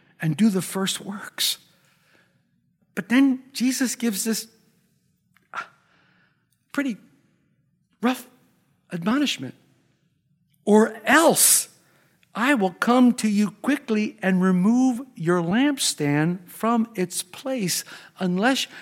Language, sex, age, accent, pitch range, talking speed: English, male, 60-79, American, 160-210 Hz, 90 wpm